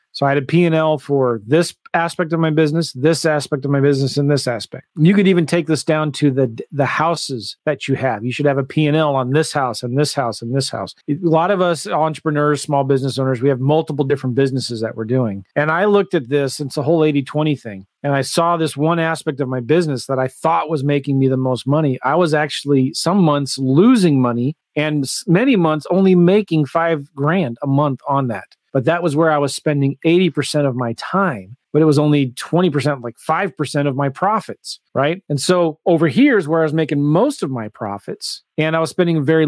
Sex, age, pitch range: male, 40-59, 135-170 Hz